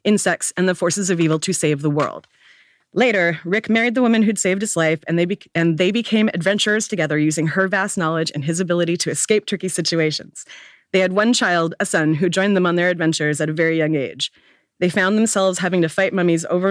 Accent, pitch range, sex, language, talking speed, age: American, 160-195 Hz, female, English, 225 wpm, 30-49